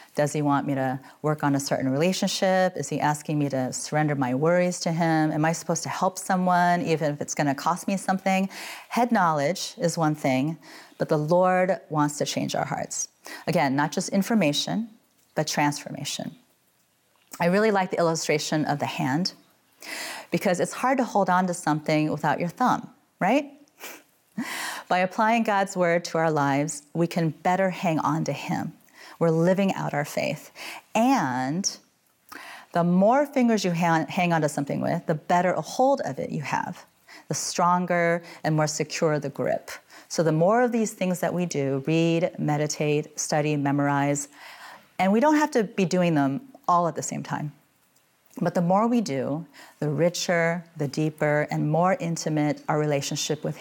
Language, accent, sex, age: English, American, female, 30-49